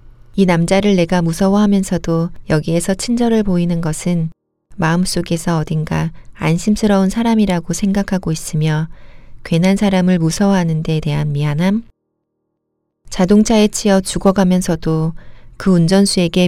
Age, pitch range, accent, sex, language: 40-59, 155-190 Hz, native, female, Korean